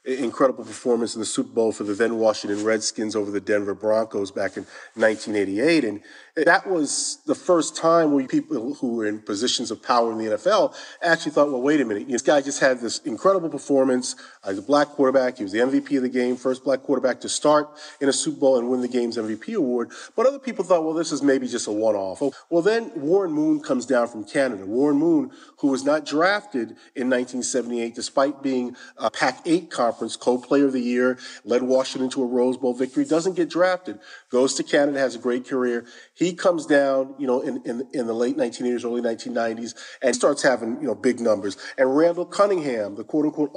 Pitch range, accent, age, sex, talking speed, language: 120-170 Hz, American, 40-59, male, 210 wpm, English